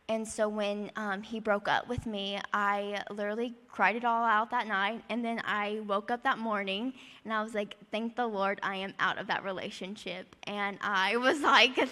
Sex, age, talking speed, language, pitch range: female, 10-29, 205 wpm, English, 200-225 Hz